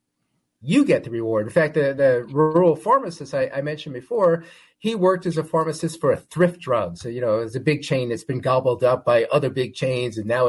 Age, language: 30-49, English